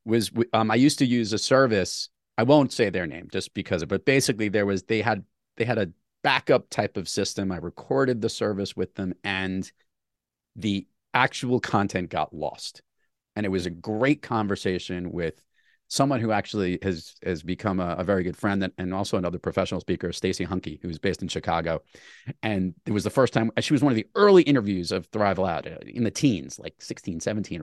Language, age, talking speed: English, 30-49, 200 wpm